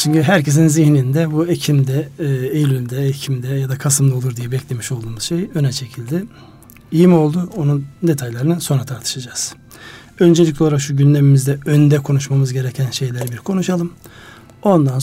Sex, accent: male, native